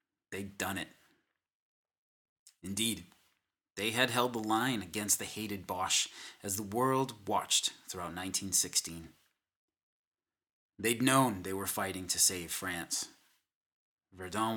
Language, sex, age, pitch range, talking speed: English, male, 30-49, 95-115 Hz, 115 wpm